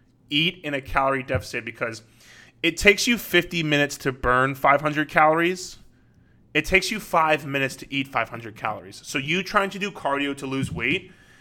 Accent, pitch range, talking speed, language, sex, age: American, 125-150 Hz, 175 wpm, English, male, 20-39